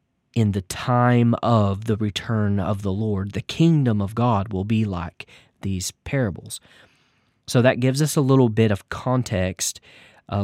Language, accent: English, American